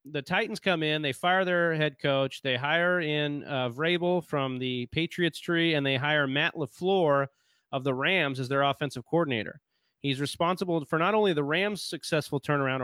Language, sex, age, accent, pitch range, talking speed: English, male, 30-49, American, 135-170 Hz, 180 wpm